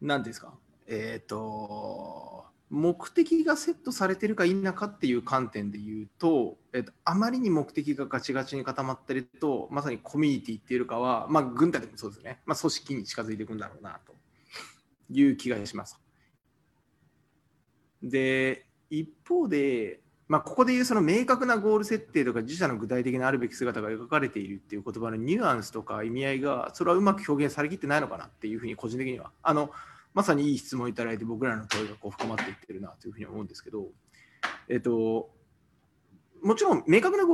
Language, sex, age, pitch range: Japanese, male, 20-39, 115-180 Hz